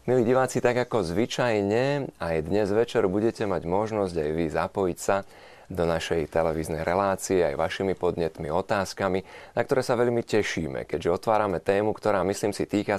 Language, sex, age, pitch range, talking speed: Slovak, male, 30-49, 85-110 Hz, 160 wpm